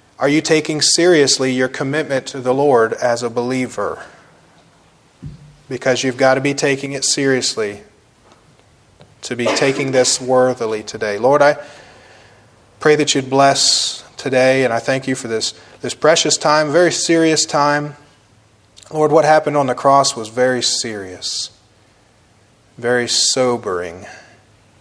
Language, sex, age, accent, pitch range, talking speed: English, male, 30-49, American, 110-135 Hz, 135 wpm